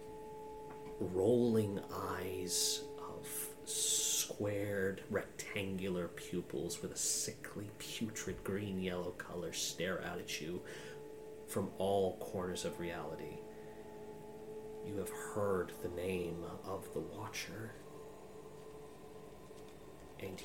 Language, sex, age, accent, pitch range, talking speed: English, male, 30-49, American, 90-115 Hz, 90 wpm